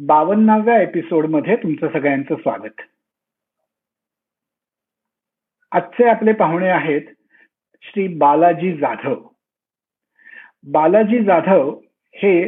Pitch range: 160-210 Hz